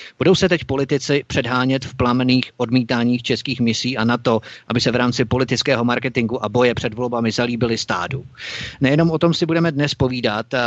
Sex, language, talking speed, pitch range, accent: male, Czech, 180 wpm, 120-135 Hz, native